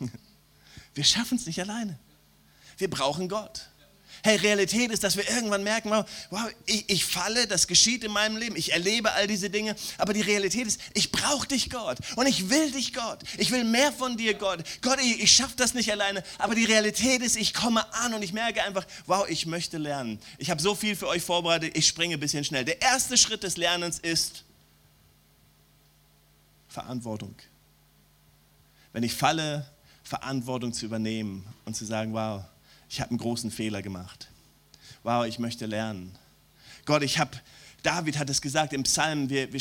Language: German